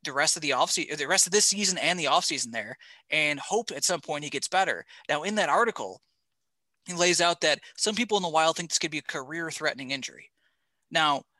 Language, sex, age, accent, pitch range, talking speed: English, male, 20-39, American, 135-170 Hz, 230 wpm